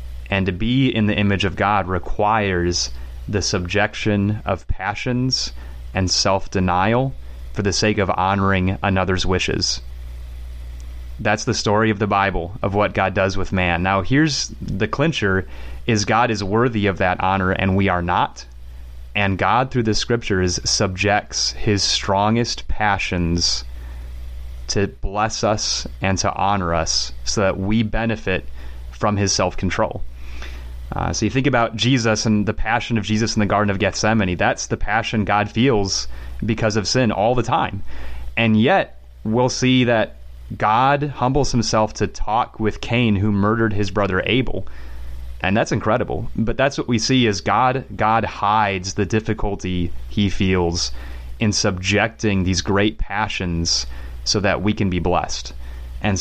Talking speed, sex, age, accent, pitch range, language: 155 wpm, male, 30-49, American, 70-110 Hz, English